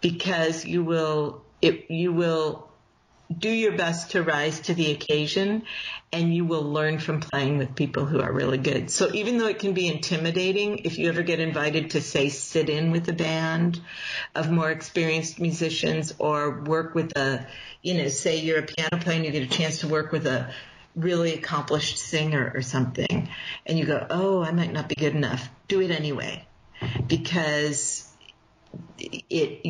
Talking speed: 180 wpm